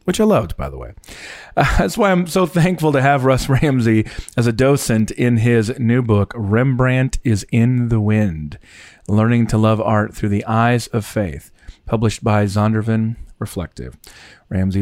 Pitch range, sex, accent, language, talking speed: 105-140 Hz, male, American, English, 170 wpm